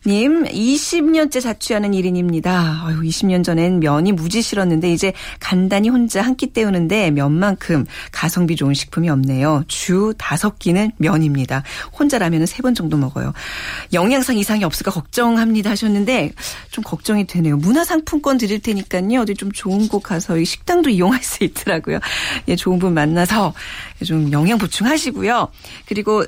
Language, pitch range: Korean, 170-235 Hz